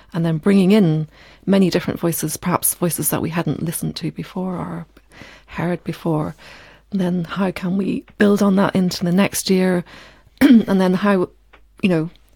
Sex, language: female, English